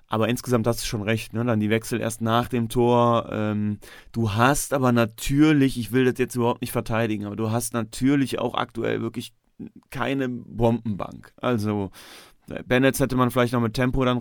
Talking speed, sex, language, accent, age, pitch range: 185 wpm, male, German, German, 30-49, 115-140 Hz